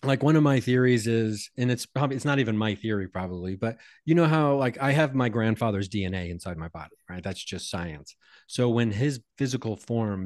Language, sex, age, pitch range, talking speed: English, male, 30-49, 95-120 Hz, 215 wpm